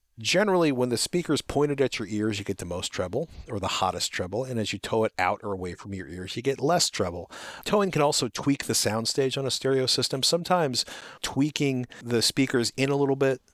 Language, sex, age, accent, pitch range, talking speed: English, male, 40-59, American, 105-130 Hz, 225 wpm